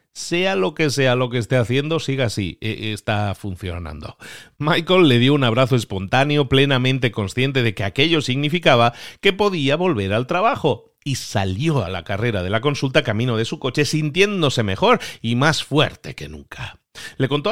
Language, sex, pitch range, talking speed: Spanish, male, 100-140 Hz, 170 wpm